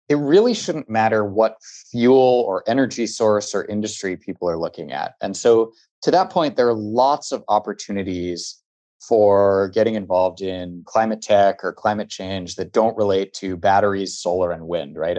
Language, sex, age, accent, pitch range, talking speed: English, male, 20-39, American, 95-125 Hz, 170 wpm